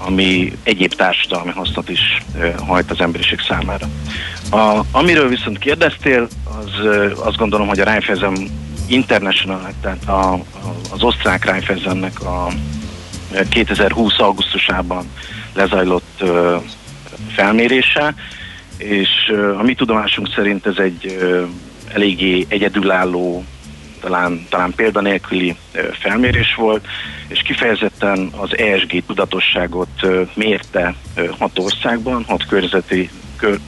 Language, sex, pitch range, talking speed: Hungarian, male, 90-105 Hz, 105 wpm